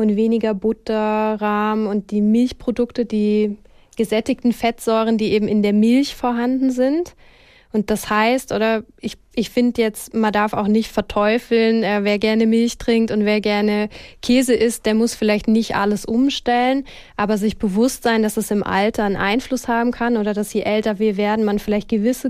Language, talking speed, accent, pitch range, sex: German, 180 wpm, German, 210-235 Hz, female